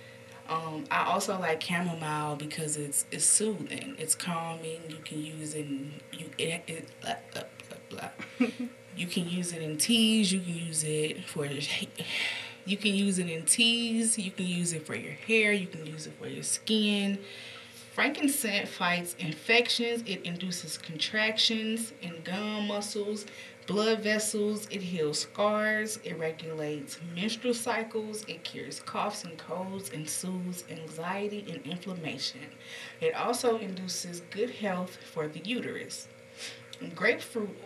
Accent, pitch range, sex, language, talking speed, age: American, 160-215 Hz, female, English, 145 wpm, 20-39